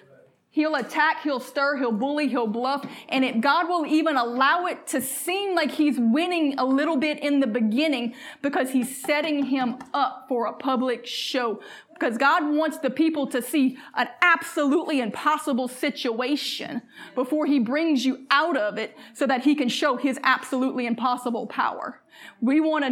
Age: 20-39